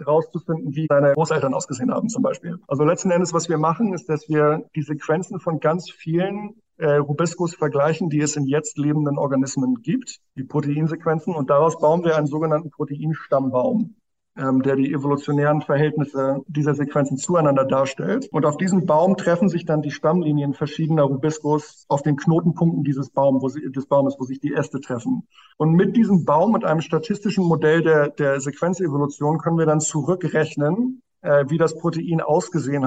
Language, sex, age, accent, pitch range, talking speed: German, male, 50-69, German, 145-170 Hz, 165 wpm